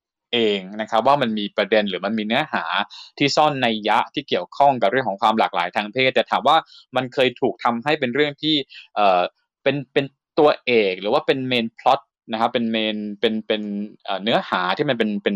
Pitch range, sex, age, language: 105-135 Hz, male, 20-39, Thai